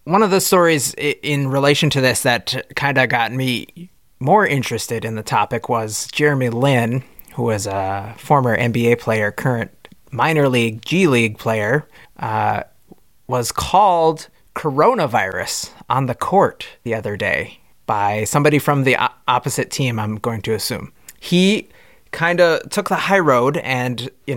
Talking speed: 155 wpm